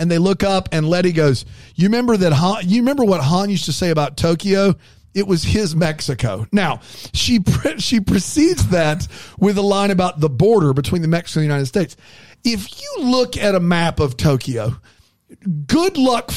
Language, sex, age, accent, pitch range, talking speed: English, male, 40-59, American, 155-225 Hz, 190 wpm